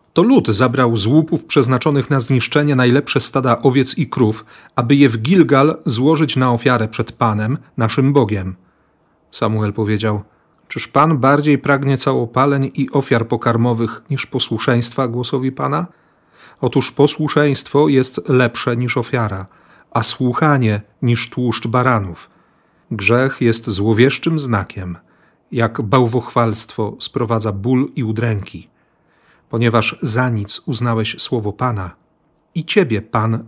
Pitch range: 110-135 Hz